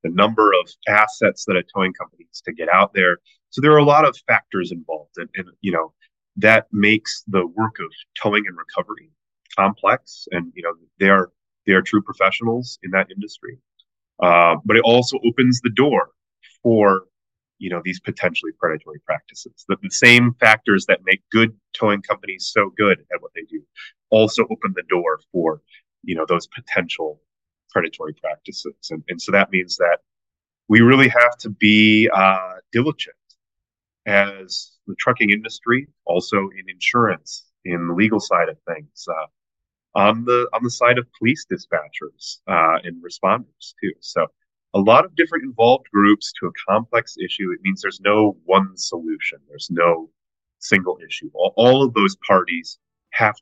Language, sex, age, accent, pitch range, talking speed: English, male, 30-49, American, 95-125 Hz, 170 wpm